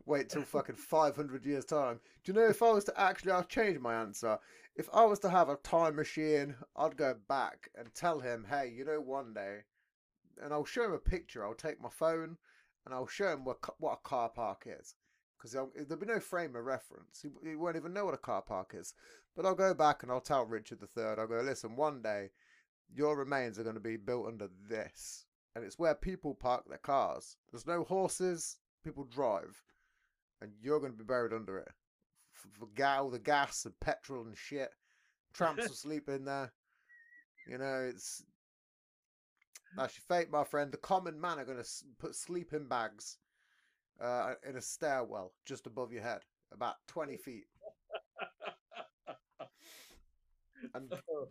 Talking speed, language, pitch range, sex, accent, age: 185 wpm, English, 125-175 Hz, male, British, 30-49